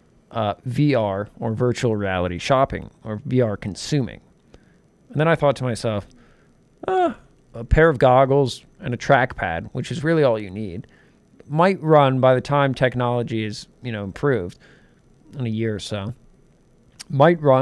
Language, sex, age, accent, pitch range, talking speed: English, male, 40-59, American, 105-145 Hz, 155 wpm